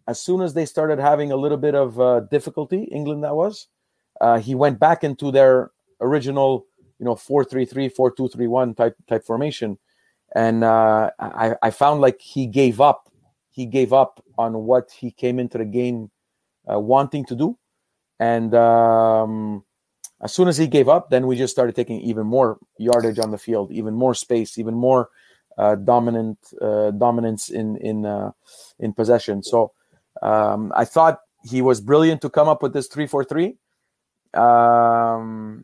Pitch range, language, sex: 115-135 Hz, English, male